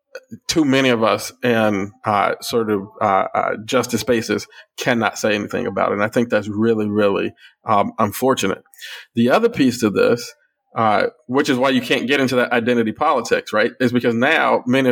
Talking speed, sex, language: 185 wpm, male, English